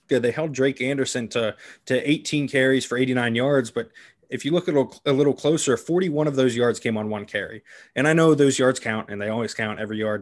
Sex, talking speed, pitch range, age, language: male, 230 wpm, 115-135 Hz, 20-39, English